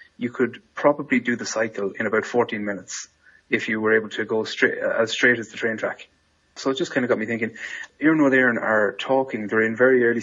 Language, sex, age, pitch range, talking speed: English, male, 20-39, 105-115 Hz, 230 wpm